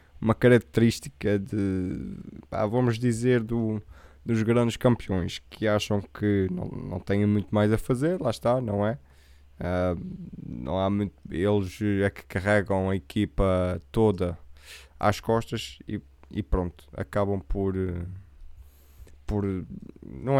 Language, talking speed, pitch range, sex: Portuguese, 125 wpm, 90-115 Hz, male